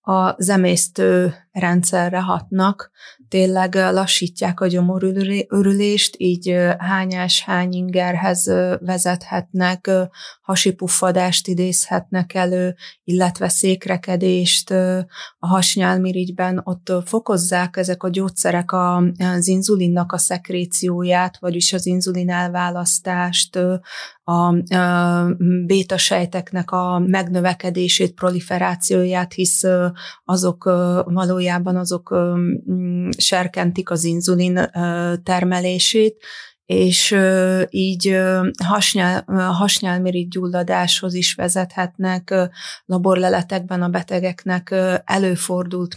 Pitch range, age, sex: 180-185 Hz, 30-49, female